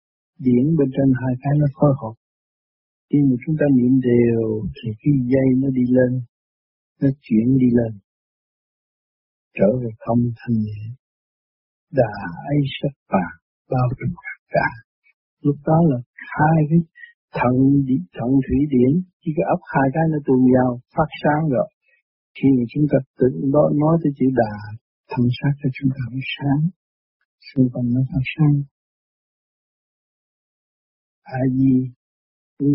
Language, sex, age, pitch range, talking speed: Vietnamese, male, 60-79, 125-150 Hz, 145 wpm